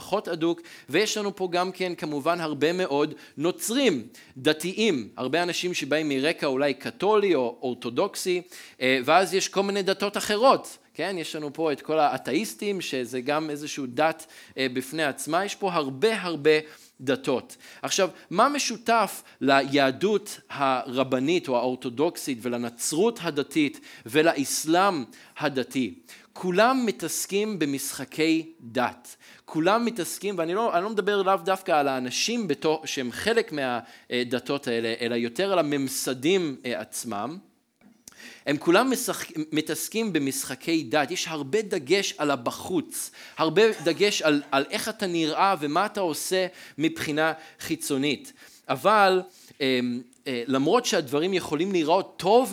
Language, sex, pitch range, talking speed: Hebrew, male, 135-195 Hz, 120 wpm